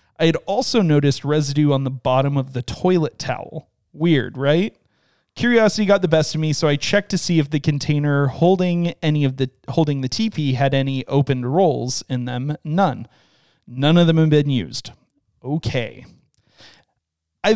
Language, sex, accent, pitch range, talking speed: English, male, American, 130-165 Hz, 170 wpm